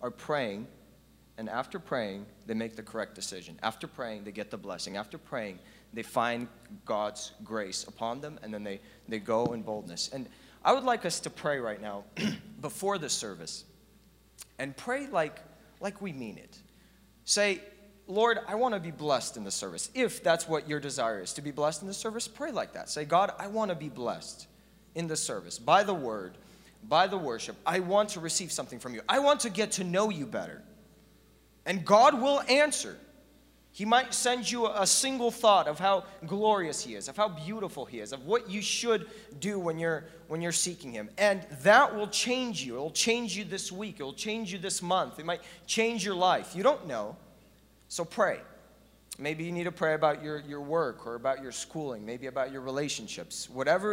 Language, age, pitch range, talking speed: English, 30-49, 145-210 Hz, 205 wpm